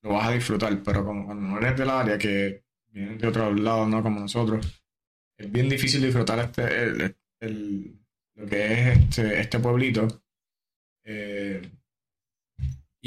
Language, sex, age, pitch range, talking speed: English, male, 20-39, 105-120 Hz, 150 wpm